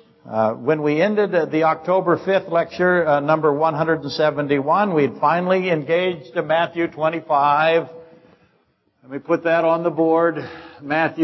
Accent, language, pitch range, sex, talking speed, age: American, English, 145-170 Hz, male, 145 wpm, 60-79